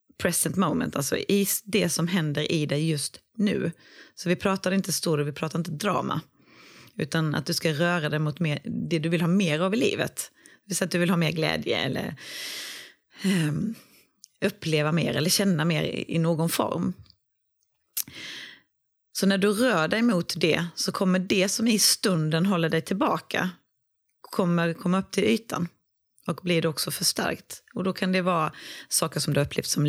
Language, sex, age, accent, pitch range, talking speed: Swedish, female, 30-49, native, 160-195 Hz, 185 wpm